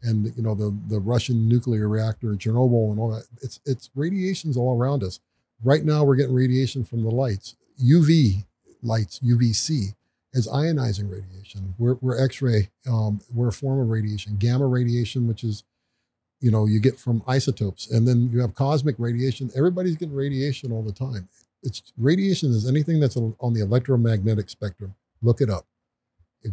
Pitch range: 110-135 Hz